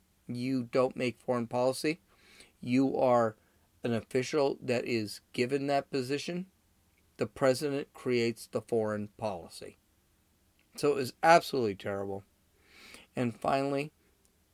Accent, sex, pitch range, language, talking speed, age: American, male, 95-135 Hz, English, 110 wpm, 30-49